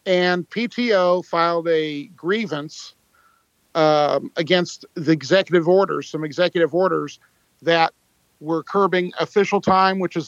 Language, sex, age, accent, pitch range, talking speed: English, male, 50-69, American, 145-180 Hz, 115 wpm